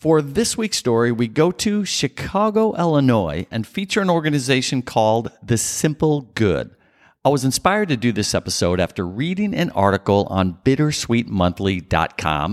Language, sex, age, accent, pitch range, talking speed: English, male, 50-69, American, 100-150 Hz, 145 wpm